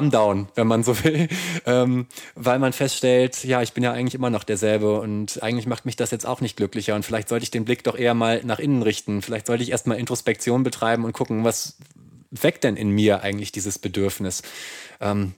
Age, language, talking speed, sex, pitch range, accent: 20-39, German, 215 wpm, male, 100-120 Hz, German